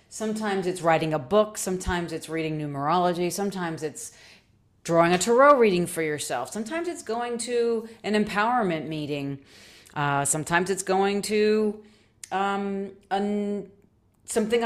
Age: 30-49